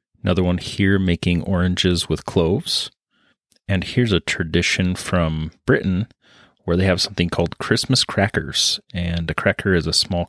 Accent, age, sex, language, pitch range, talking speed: American, 30-49, male, English, 85-95 Hz, 150 wpm